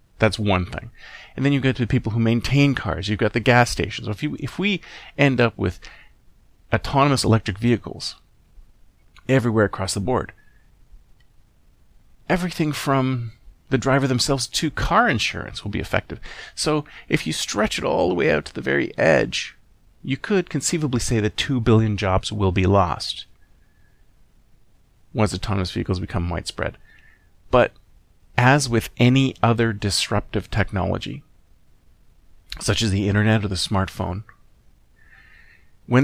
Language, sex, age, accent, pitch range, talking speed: English, male, 30-49, American, 95-135 Hz, 145 wpm